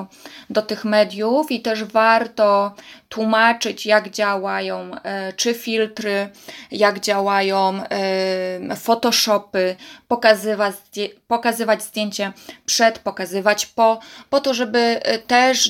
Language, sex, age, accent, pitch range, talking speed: Polish, female, 20-39, native, 200-230 Hz, 90 wpm